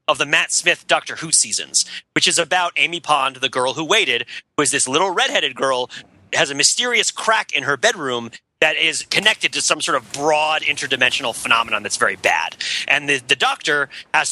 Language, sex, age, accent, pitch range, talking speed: English, male, 30-49, American, 140-205 Hz, 195 wpm